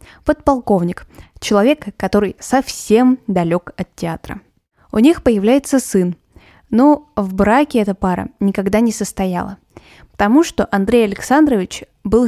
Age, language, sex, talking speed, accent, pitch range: 20-39, Russian, female, 115 wpm, native, 185-230 Hz